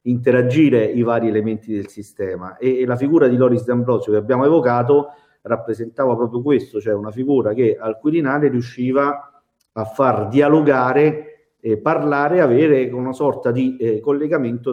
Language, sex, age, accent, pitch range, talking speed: Italian, male, 50-69, native, 105-130 Hz, 150 wpm